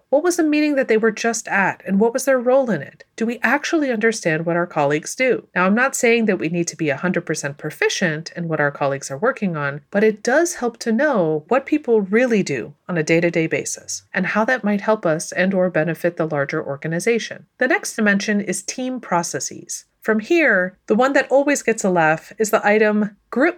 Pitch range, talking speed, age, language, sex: 170-230 Hz, 220 wpm, 30-49, English, female